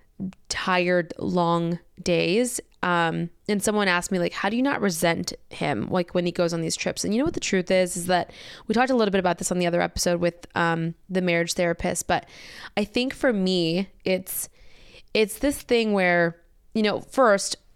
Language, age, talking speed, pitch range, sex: English, 20-39, 205 wpm, 175-205 Hz, female